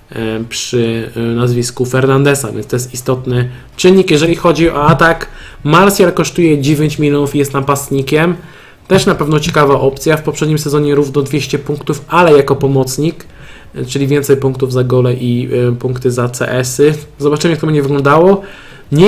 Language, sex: Polish, male